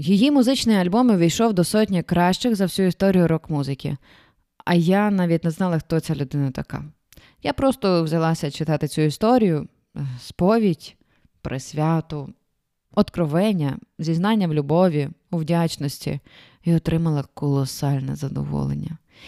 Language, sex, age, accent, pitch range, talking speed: Ukrainian, female, 20-39, native, 140-185 Hz, 120 wpm